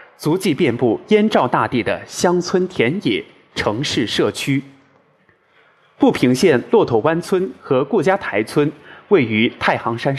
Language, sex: Chinese, male